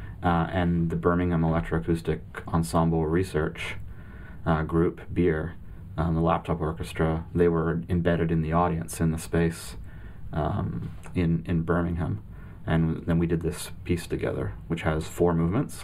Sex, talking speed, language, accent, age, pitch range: male, 145 wpm, English, American, 30-49, 80-90 Hz